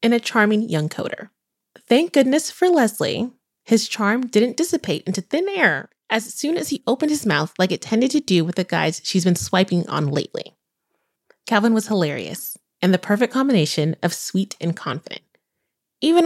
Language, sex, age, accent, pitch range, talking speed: English, female, 20-39, American, 175-240 Hz, 175 wpm